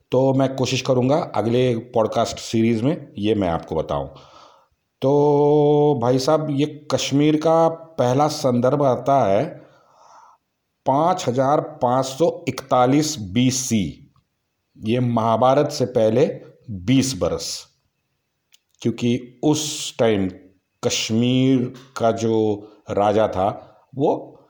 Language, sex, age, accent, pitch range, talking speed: Hindi, male, 50-69, native, 105-135 Hz, 100 wpm